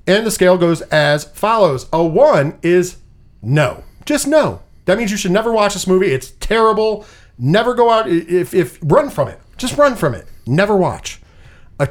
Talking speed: 185 wpm